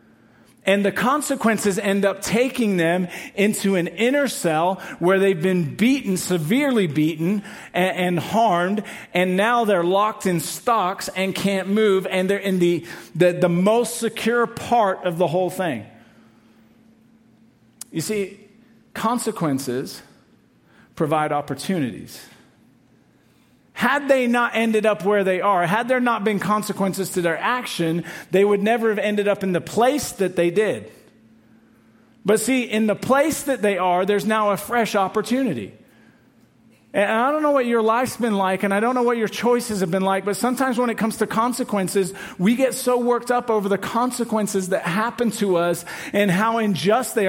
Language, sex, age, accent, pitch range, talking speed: English, male, 40-59, American, 190-235 Hz, 165 wpm